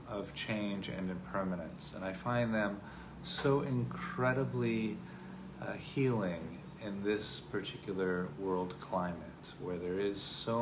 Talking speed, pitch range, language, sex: 120 wpm, 95-110 Hz, English, male